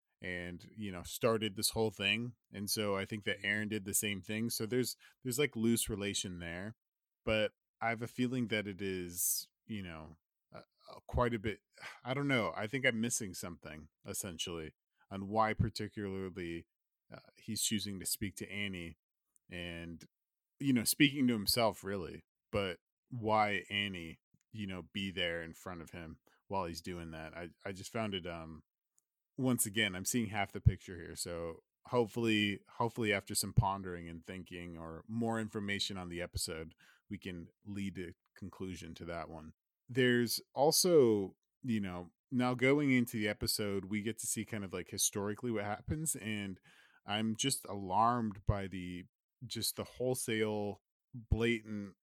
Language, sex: English, male